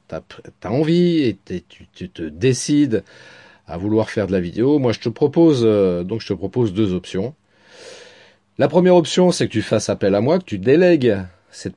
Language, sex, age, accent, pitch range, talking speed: French, male, 40-59, French, 100-135 Hz, 195 wpm